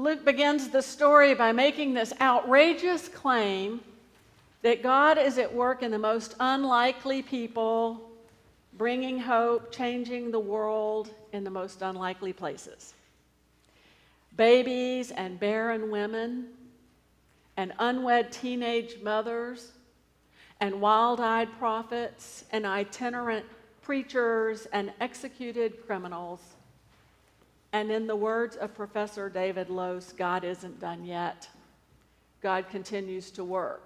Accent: American